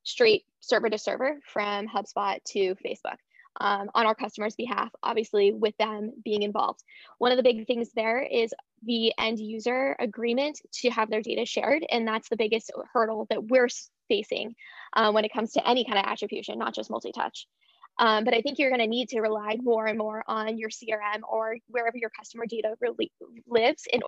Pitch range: 215-240 Hz